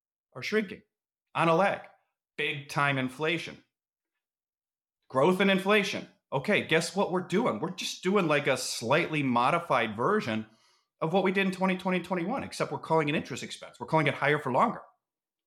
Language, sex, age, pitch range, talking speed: English, male, 30-49, 135-180 Hz, 165 wpm